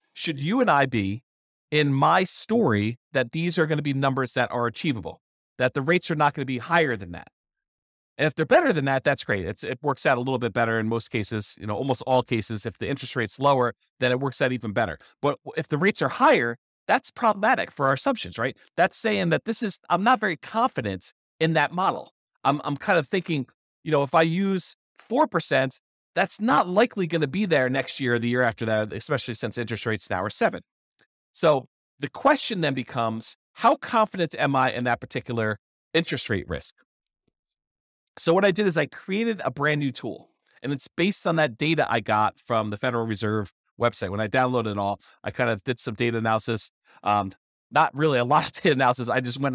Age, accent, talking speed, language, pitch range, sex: 40-59, American, 220 wpm, English, 115-165 Hz, male